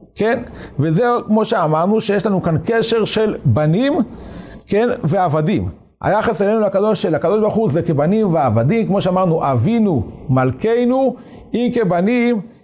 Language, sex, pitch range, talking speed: Hebrew, male, 165-225 Hz, 125 wpm